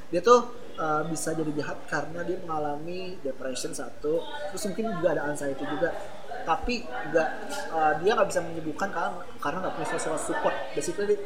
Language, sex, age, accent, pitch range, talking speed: Indonesian, male, 20-39, native, 155-200 Hz, 160 wpm